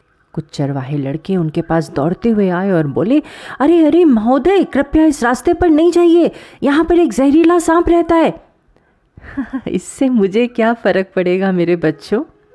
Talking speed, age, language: 160 wpm, 30-49, Hindi